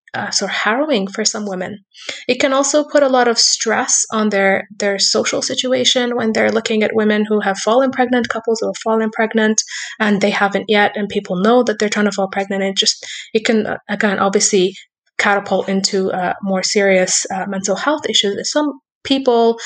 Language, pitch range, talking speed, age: English, 195-235 Hz, 200 wpm, 20-39